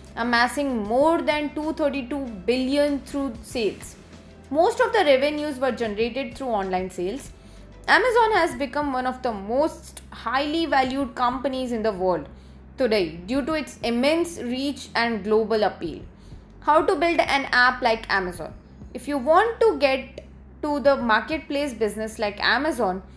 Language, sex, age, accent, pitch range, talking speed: English, female, 20-39, Indian, 225-295 Hz, 145 wpm